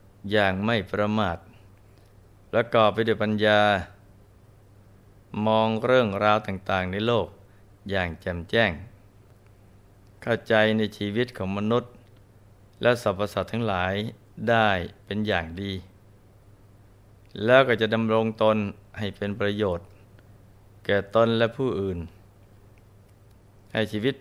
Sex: male